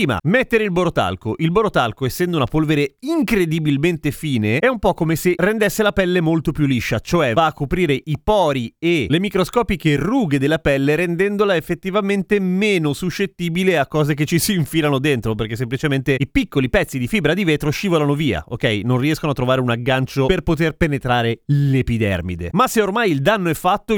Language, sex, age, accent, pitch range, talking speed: Italian, male, 30-49, native, 130-190 Hz, 185 wpm